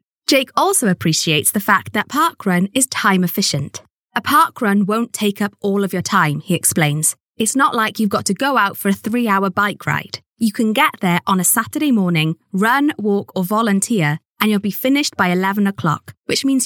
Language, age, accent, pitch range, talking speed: English, 20-39, British, 175-240 Hz, 200 wpm